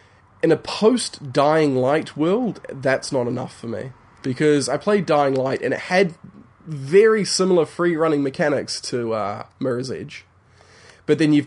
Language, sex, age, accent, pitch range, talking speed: English, male, 20-39, Australian, 125-150 Hz, 150 wpm